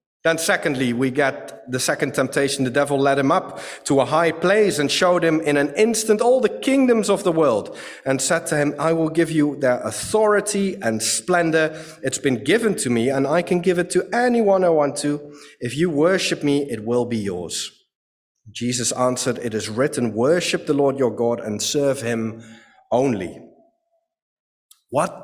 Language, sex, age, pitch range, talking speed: English, male, 30-49, 130-180 Hz, 185 wpm